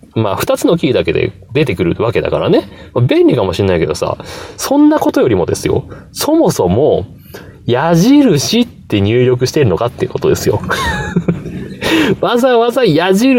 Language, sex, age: Japanese, male, 30-49